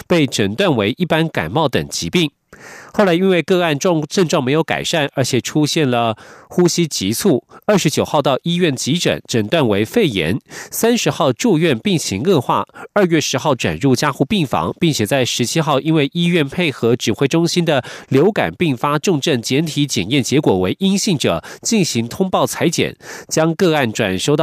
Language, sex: German, male